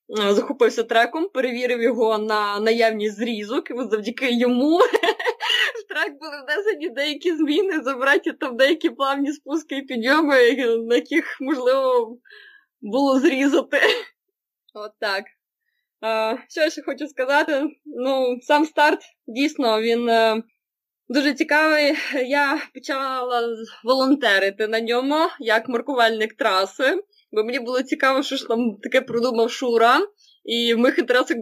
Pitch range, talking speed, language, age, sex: 225-300 Hz, 120 wpm, Ukrainian, 20-39, female